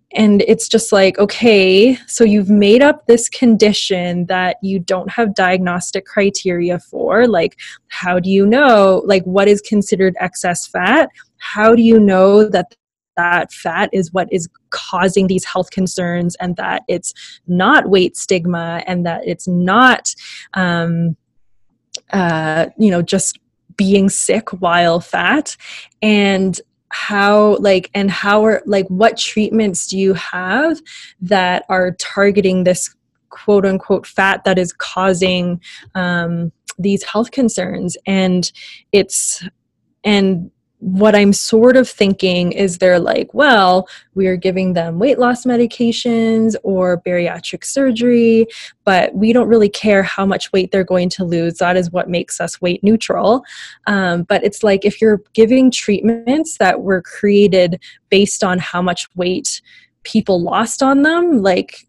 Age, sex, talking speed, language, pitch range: 20-39, female, 145 wpm, English, 180-215 Hz